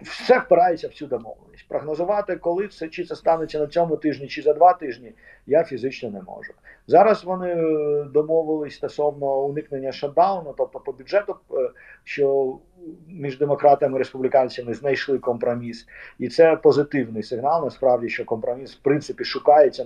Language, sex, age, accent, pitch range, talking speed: Ukrainian, male, 50-69, native, 135-205 Hz, 145 wpm